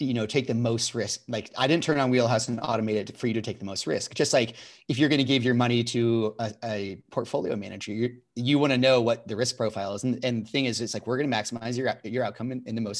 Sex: male